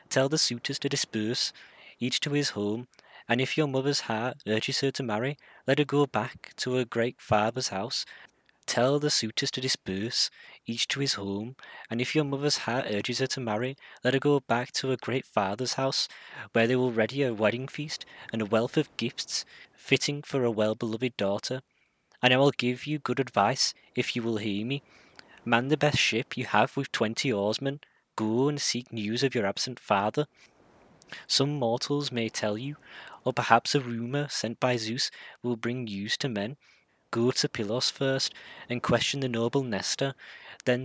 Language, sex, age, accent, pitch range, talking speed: English, male, 20-39, British, 115-135 Hz, 185 wpm